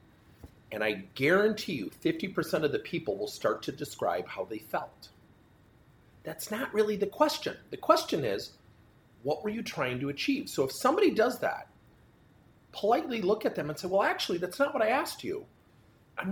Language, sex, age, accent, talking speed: English, male, 40-59, American, 180 wpm